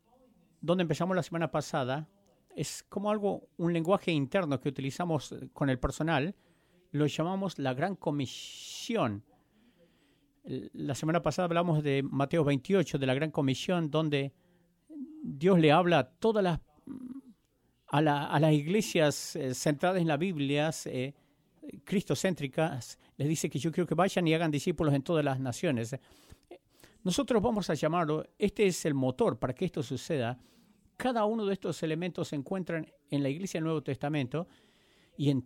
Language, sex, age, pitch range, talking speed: English, male, 50-69, 140-185 Hz, 155 wpm